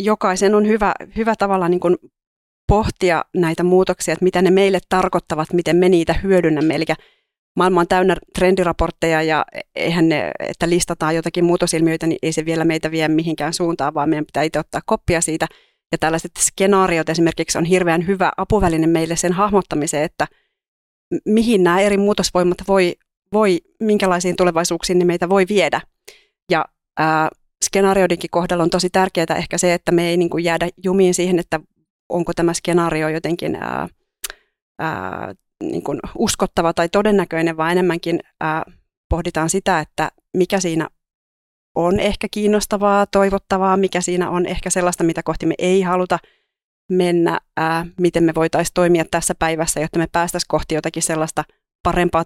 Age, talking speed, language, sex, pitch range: 30-49, 150 wpm, Finnish, female, 165-185 Hz